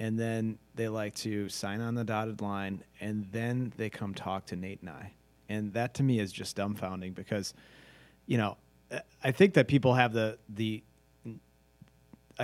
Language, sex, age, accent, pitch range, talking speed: English, male, 30-49, American, 100-120 Hz, 175 wpm